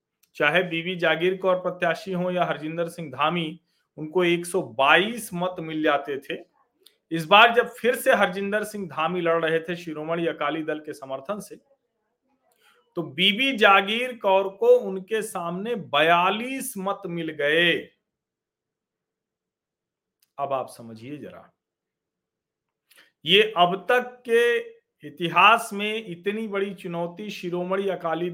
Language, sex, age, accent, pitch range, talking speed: Hindi, male, 40-59, native, 165-210 Hz, 125 wpm